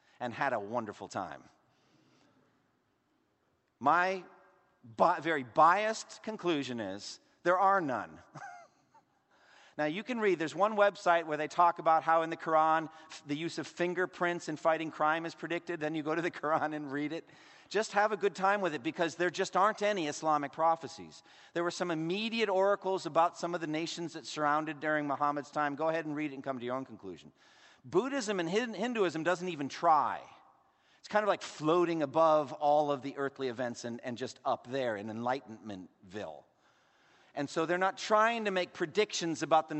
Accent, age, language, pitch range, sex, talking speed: American, 50-69, English, 140-180 Hz, male, 180 wpm